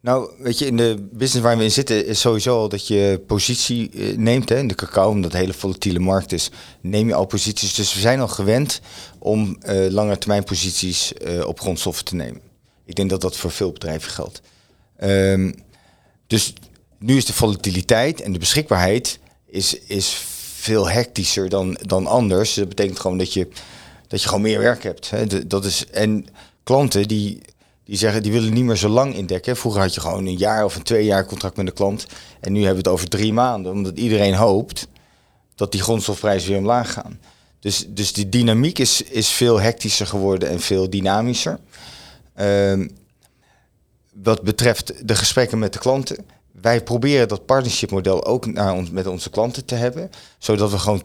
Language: Dutch